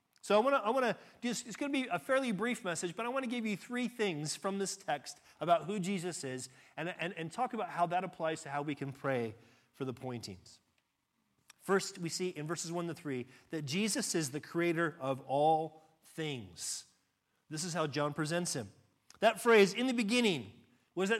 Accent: American